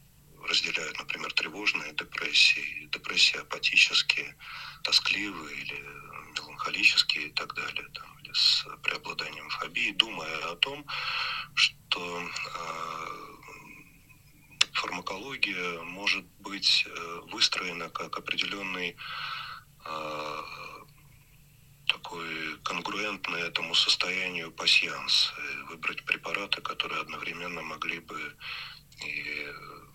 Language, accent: Russian, native